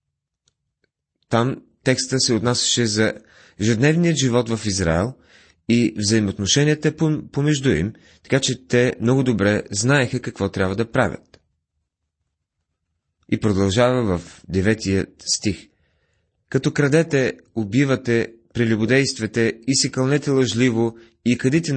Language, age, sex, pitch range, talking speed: Bulgarian, 30-49, male, 100-130 Hz, 105 wpm